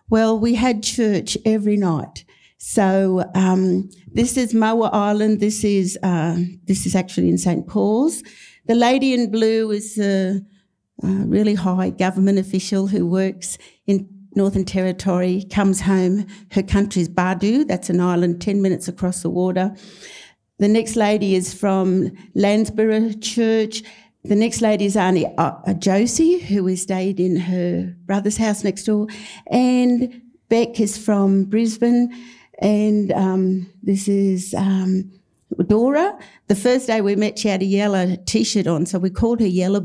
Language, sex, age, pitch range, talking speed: English, female, 60-79, 190-220 Hz, 150 wpm